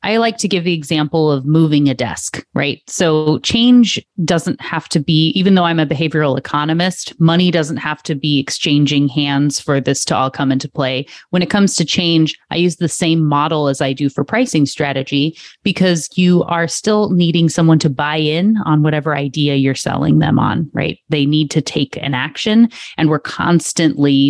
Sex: female